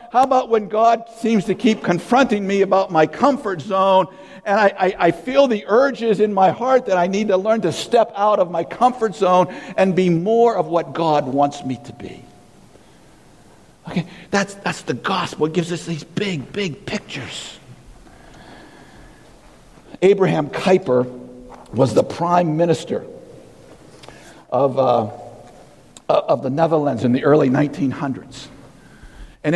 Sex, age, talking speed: male, 60-79, 150 wpm